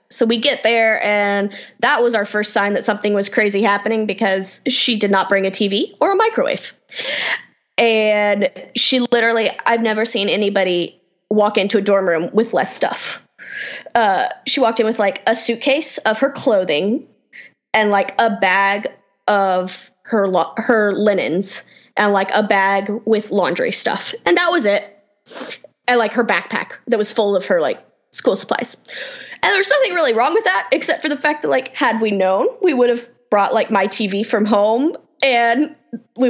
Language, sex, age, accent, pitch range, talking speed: English, female, 10-29, American, 205-255 Hz, 180 wpm